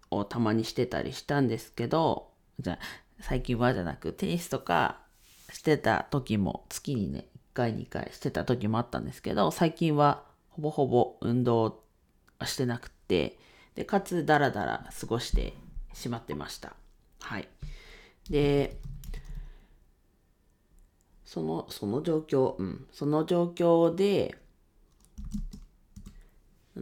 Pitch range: 110-145 Hz